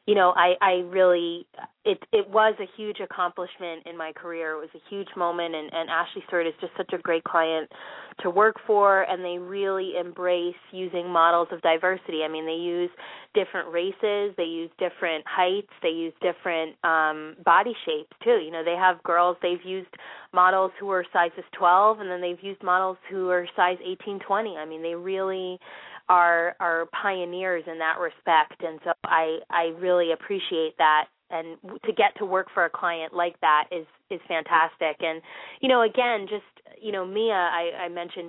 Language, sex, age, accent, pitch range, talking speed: English, female, 20-39, American, 165-190 Hz, 190 wpm